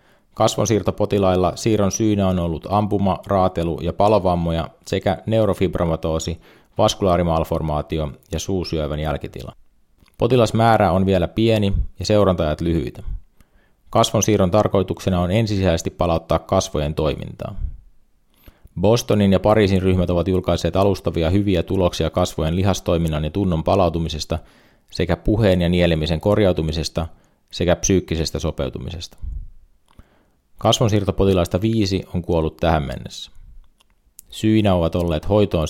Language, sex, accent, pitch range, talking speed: Finnish, male, native, 80-100 Hz, 105 wpm